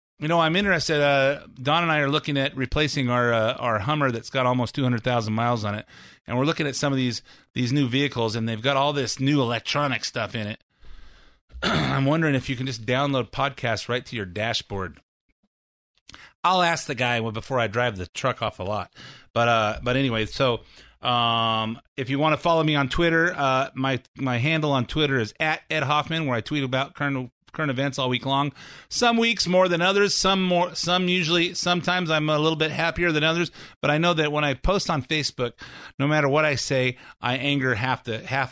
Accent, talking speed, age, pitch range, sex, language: American, 215 wpm, 30-49, 115-150 Hz, male, English